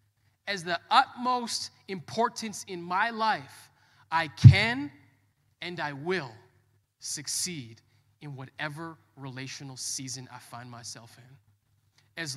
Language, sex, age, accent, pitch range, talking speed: English, male, 20-39, American, 110-155 Hz, 105 wpm